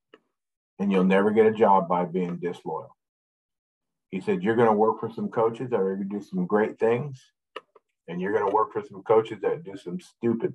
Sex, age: male, 50-69